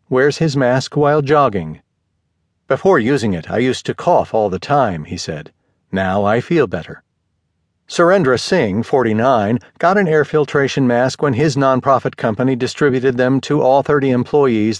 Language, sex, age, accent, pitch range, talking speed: English, male, 50-69, American, 105-145 Hz, 160 wpm